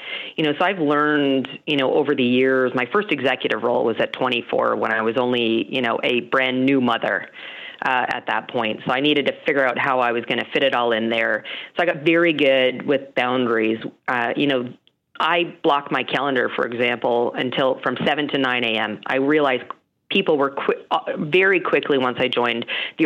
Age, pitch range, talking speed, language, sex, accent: 40-59, 125-160 Hz, 210 wpm, English, female, American